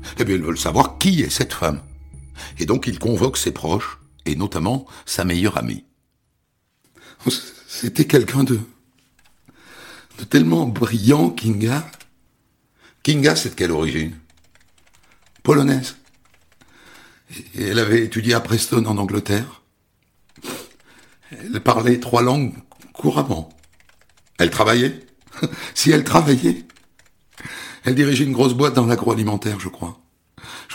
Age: 60-79